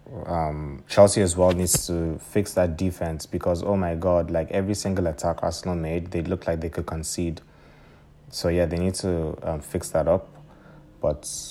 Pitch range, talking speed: 85-95 Hz, 180 wpm